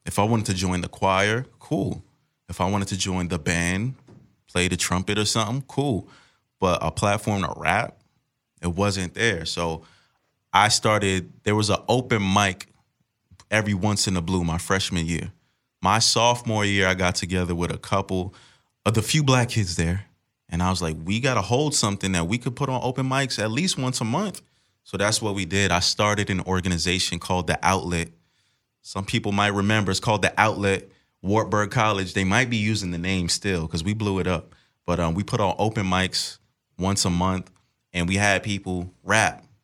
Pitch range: 90-110 Hz